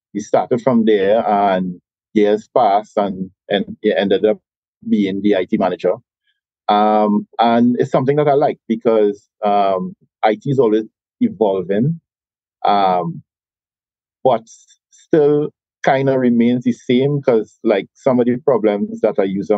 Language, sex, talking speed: English, male, 140 wpm